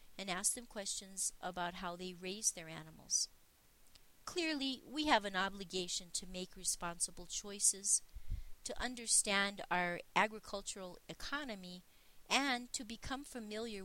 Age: 40-59